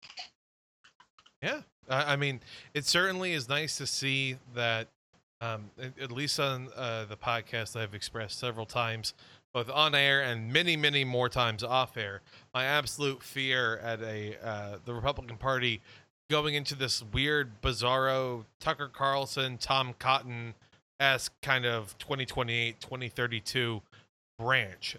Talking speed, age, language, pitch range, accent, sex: 130 wpm, 20-39, English, 115-140 Hz, American, male